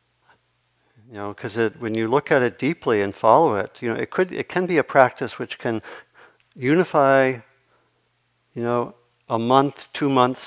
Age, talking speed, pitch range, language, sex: 60-79, 165 wpm, 100-120 Hz, English, male